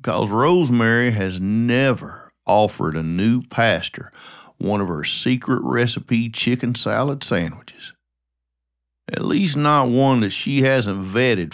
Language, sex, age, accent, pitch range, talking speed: English, male, 50-69, American, 95-130 Hz, 125 wpm